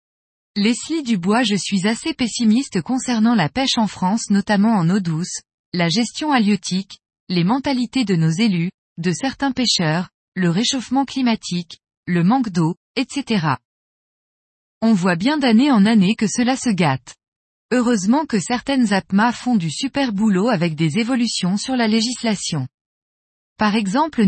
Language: French